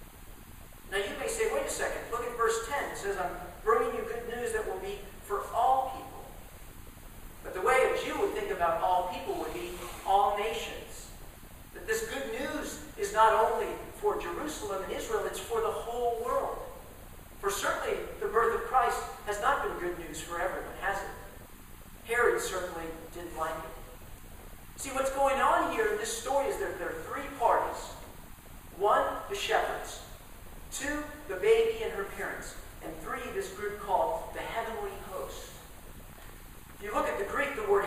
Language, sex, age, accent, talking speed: English, male, 50-69, American, 175 wpm